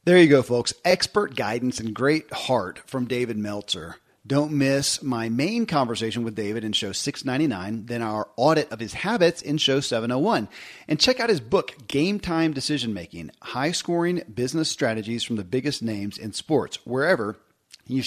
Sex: male